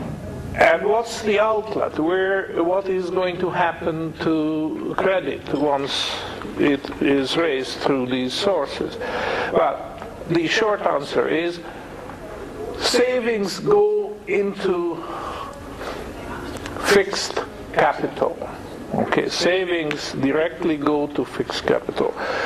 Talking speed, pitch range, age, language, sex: 95 wpm, 150-215 Hz, 60-79, English, male